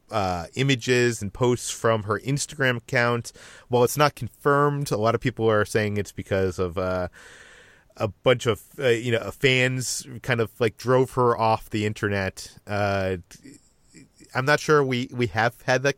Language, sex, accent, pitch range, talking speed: English, male, American, 100-130 Hz, 175 wpm